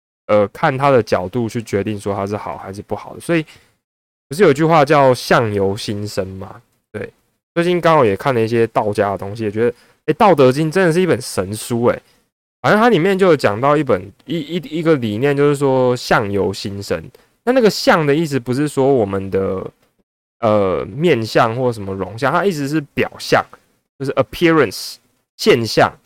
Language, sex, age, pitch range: Chinese, male, 20-39, 105-150 Hz